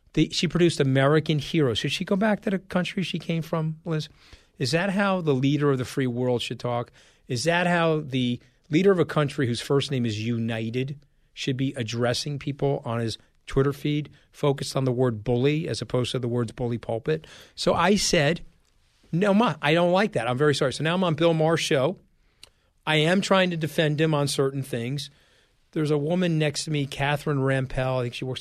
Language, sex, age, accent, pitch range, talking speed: English, male, 40-59, American, 130-165 Hz, 210 wpm